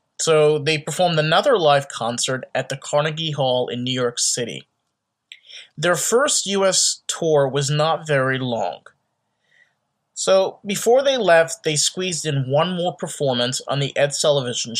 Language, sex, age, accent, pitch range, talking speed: English, male, 30-49, American, 130-160 Hz, 145 wpm